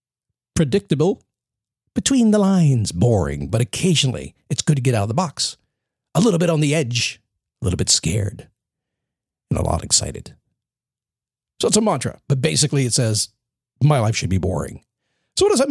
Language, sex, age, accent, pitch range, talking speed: English, male, 50-69, American, 115-165 Hz, 175 wpm